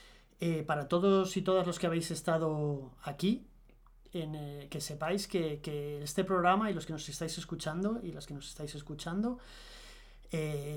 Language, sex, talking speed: Spanish, male, 175 wpm